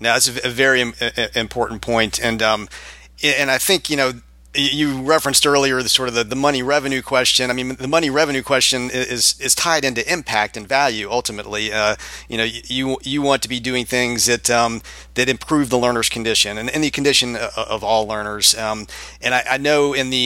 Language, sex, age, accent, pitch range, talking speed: English, male, 40-59, American, 115-130 Hz, 205 wpm